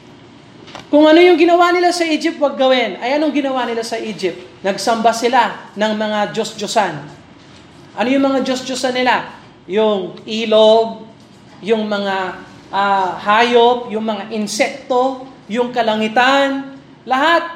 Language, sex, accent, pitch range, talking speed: Filipino, male, native, 215-275 Hz, 125 wpm